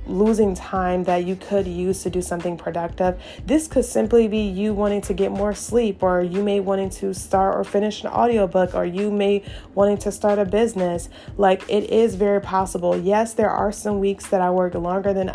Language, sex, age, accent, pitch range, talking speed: English, female, 20-39, American, 185-210 Hz, 205 wpm